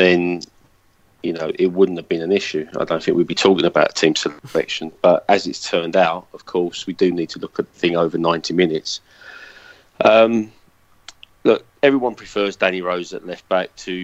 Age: 30-49